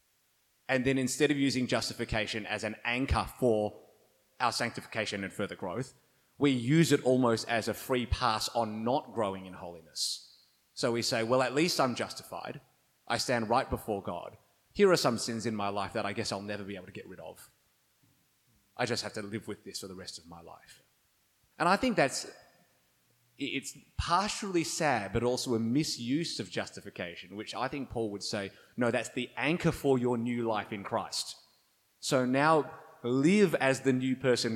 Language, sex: English, male